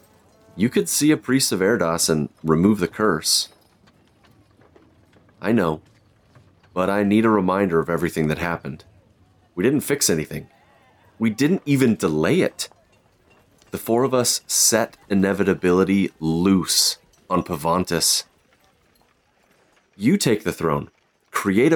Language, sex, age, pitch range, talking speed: English, male, 30-49, 85-120 Hz, 125 wpm